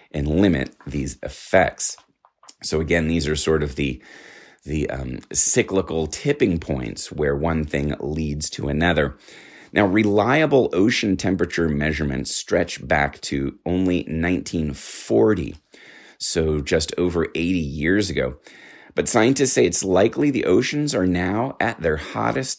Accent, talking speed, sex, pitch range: American, 135 wpm, male, 75-100 Hz